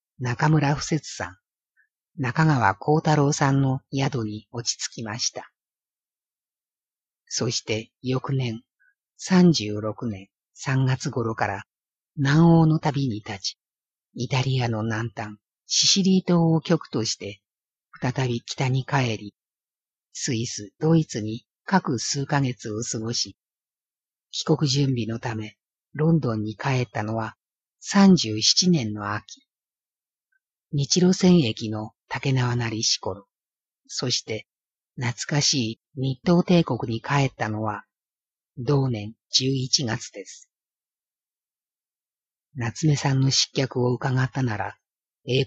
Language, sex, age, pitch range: Japanese, female, 50-69, 115-150 Hz